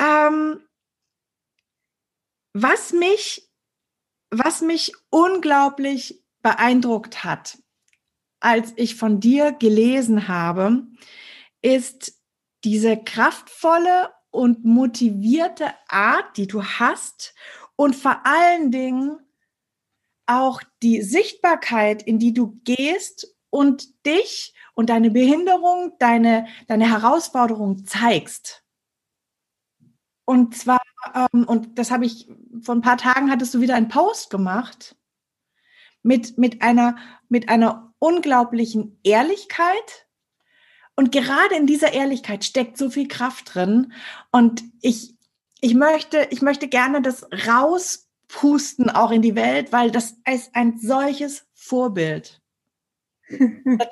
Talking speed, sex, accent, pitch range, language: 100 wpm, female, German, 230-295 Hz, German